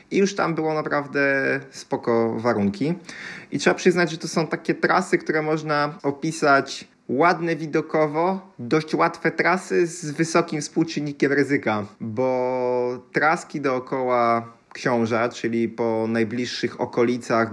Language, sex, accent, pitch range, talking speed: Polish, male, native, 115-150 Hz, 120 wpm